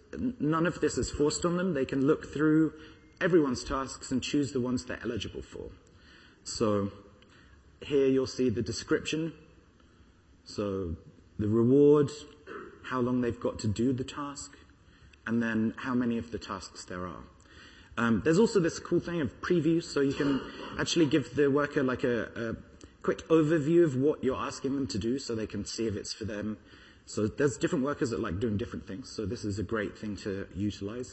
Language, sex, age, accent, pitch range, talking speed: English, male, 30-49, British, 100-140 Hz, 190 wpm